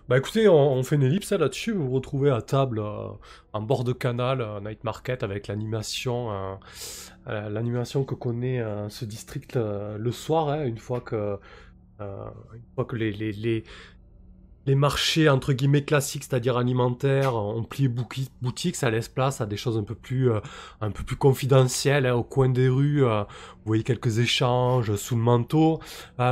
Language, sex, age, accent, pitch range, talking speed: French, male, 20-39, French, 110-145 Hz, 190 wpm